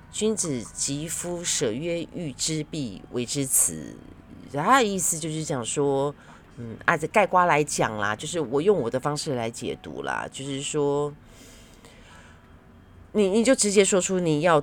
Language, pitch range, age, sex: Chinese, 130-180 Hz, 30-49, female